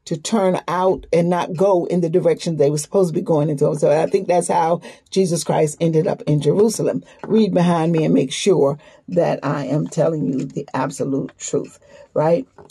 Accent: American